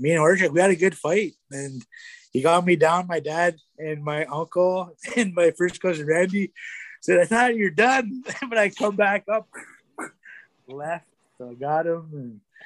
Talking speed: 190 wpm